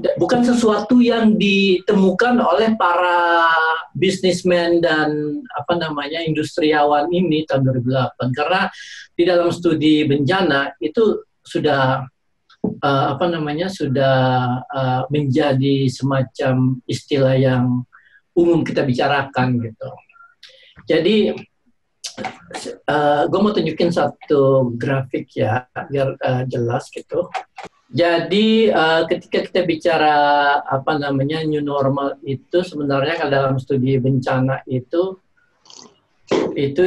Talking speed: 100 wpm